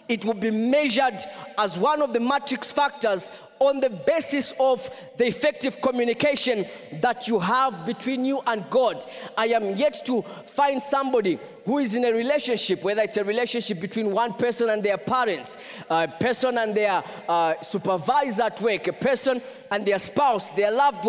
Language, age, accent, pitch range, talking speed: English, 20-39, South African, 200-265 Hz, 170 wpm